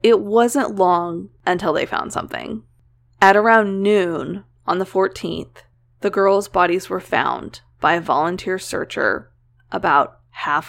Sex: female